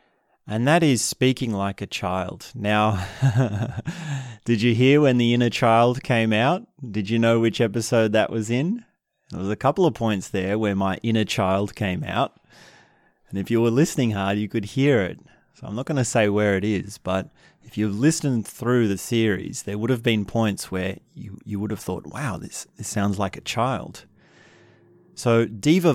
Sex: male